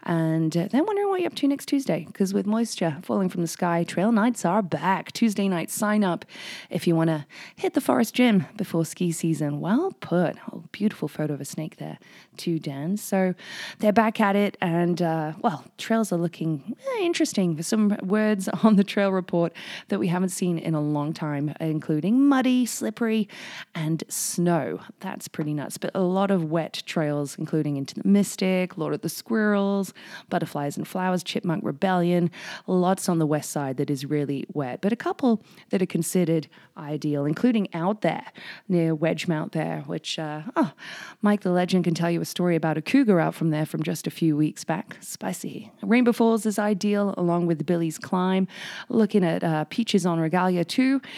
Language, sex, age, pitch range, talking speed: English, female, 20-39, 160-210 Hz, 190 wpm